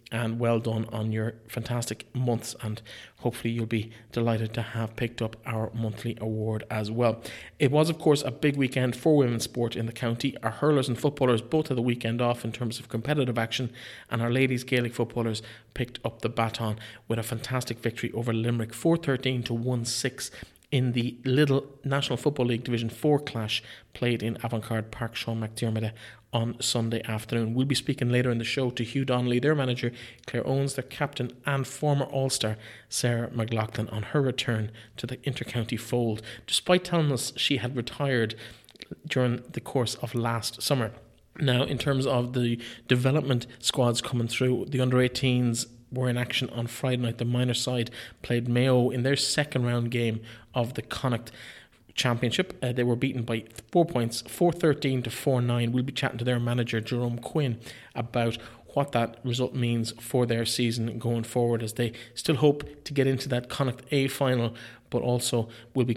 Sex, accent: male, Irish